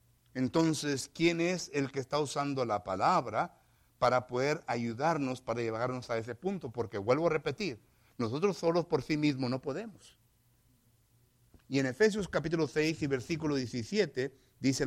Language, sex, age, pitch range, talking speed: English, male, 60-79, 115-140 Hz, 150 wpm